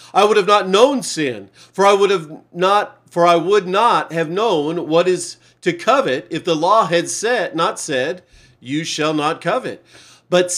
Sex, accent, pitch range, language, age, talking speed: male, American, 135-180 Hz, English, 40-59, 185 wpm